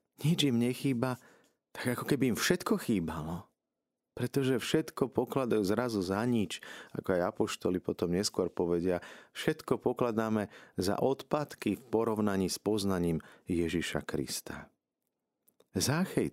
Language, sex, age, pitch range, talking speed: Slovak, male, 50-69, 90-120 Hz, 120 wpm